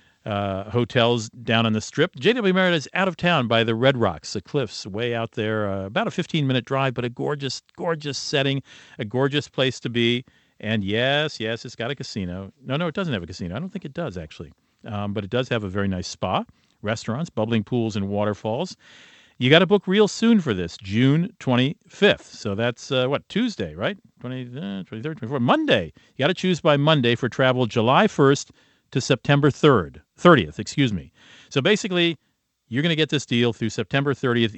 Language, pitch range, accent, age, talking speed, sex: English, 105-140 Hz, American, 50-69, 205 wpm, male